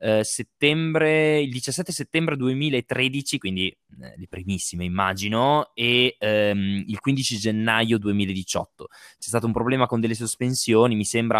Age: 20-39